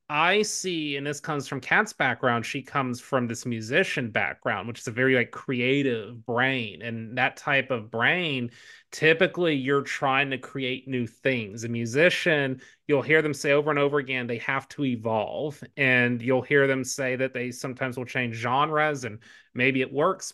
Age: 30-49